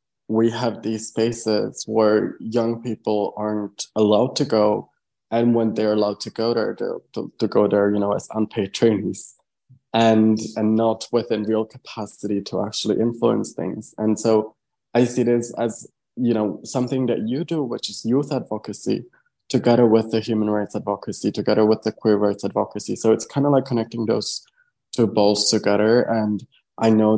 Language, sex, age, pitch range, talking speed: English, male, 20-39, 105-115 Hz, 170 wpm